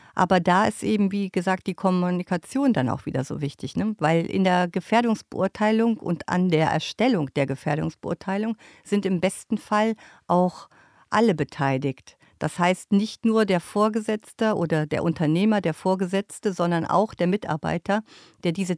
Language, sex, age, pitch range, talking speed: German, female, 50-69, 170-220 Hz, 150 wpm